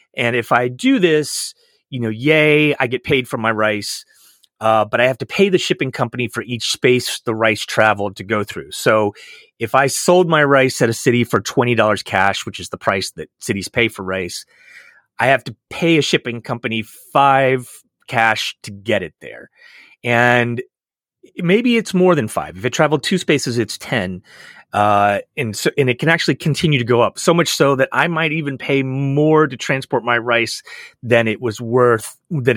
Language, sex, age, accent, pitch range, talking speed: English, male, 30-49, American, 110-145 Hz, 200 wpm